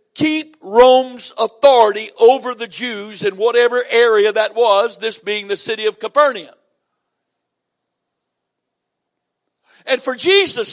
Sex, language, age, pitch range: male, English, 60-79, 245-355 Hz